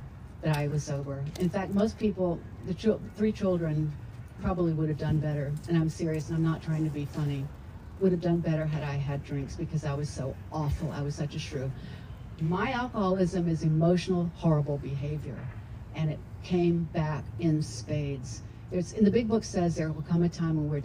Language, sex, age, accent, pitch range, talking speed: English, female, 60-79, American, 145-175 Hz, 200 wpm